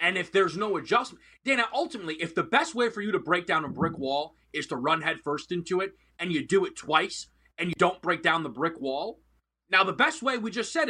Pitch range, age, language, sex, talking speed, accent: 160-230 Hz, 30-49, English, male, 250 wpm, American